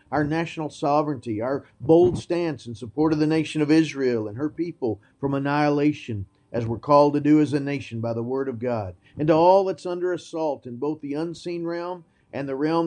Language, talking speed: English, 210 wpm